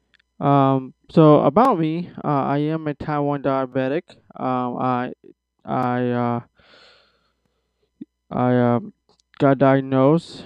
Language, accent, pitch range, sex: English, American, 130-160 Hz, male